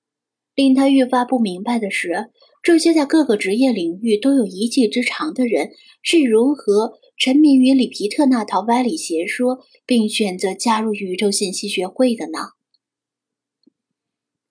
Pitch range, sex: 215-270 Hz, female